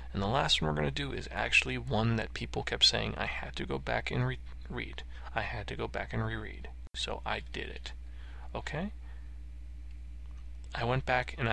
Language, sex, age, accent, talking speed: English, male, 20-39, American, 200 wpm